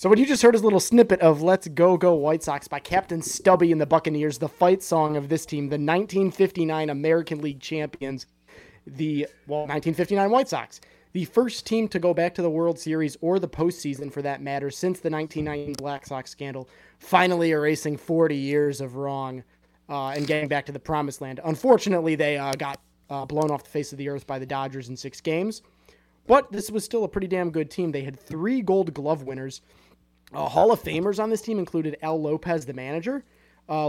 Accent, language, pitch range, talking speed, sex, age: American, English, 140-180 Hz, 210 wpm, male, 20-39